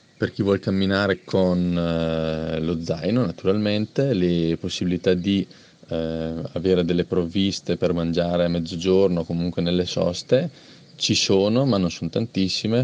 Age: 20-39